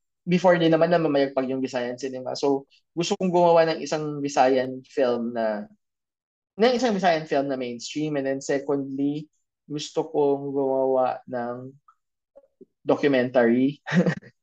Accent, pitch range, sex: native, 130-165 Hz, male